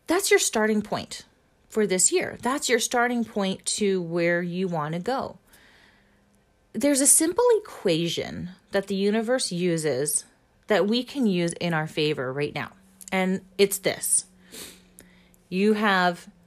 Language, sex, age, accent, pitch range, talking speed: English, female, 30-49, American, 165-230 Hz, 140 wpm